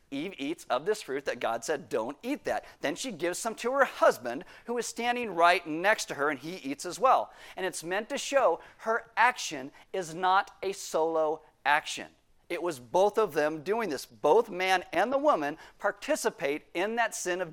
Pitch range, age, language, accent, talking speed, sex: 170-235 Hz, 40-59, English, American, 200 wpm, male